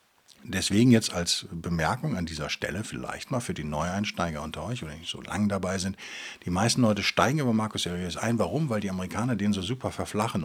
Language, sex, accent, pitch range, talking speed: German, male, German, 85-115 Hz, 205 wpm